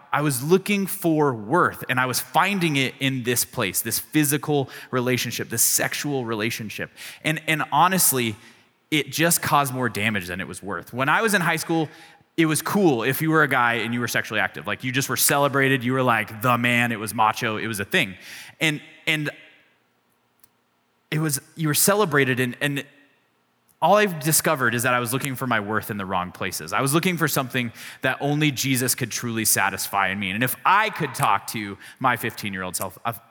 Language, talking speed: English, 205 wpm